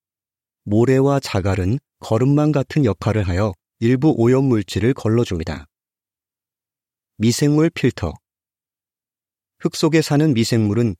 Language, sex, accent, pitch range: Korean, male, native, 100-130 Hz